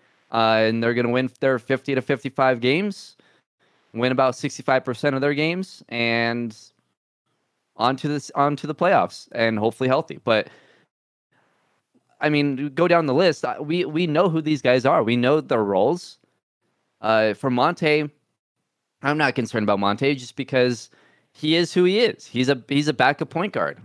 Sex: male